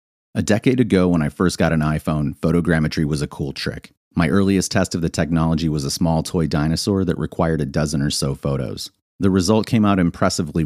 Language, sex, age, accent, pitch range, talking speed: English, male, 30-49, American, 75-95 Hz, 210 wpm